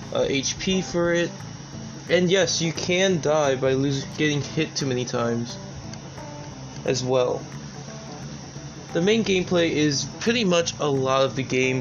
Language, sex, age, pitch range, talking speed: English, male, 20-39, 130-165 Hz, 145 wpm